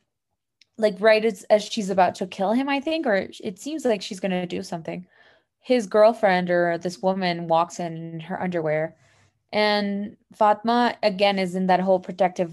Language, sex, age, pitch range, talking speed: English, female, 20-39, 175-210 Hz, 180 wpm